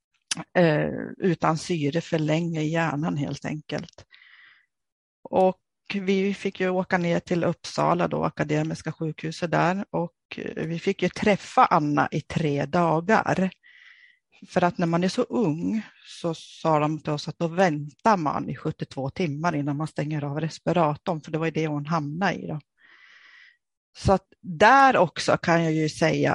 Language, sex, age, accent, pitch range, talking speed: Swedish, female, 40-59, native, 155-185 Hz, 160 wpm